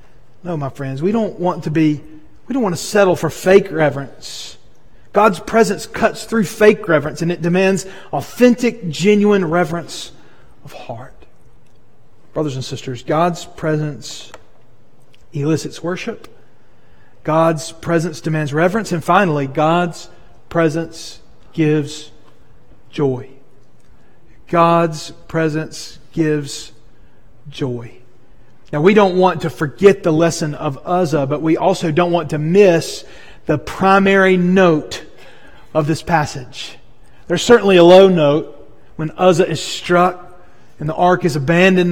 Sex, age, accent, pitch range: male, 40-59, American, 145-180 Hz